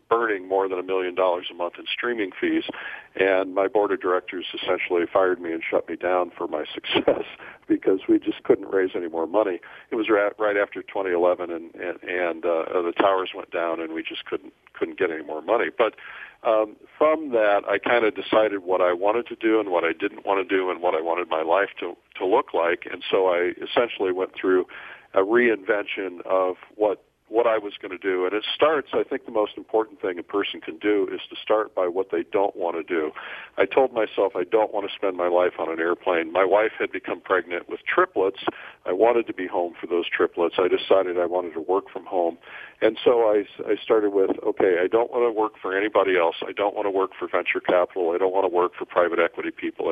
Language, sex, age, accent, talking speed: English, male, 50-69, American, 230 wpm